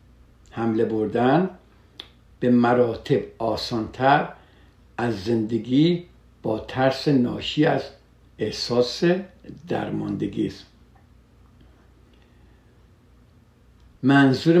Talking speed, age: 60 wpm, 60-79